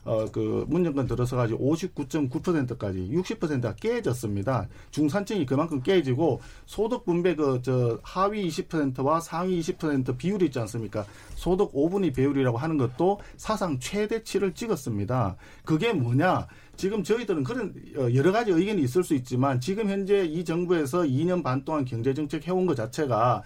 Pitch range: 130-195 Hz